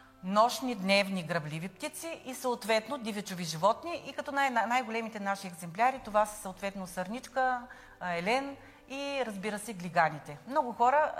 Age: 30-49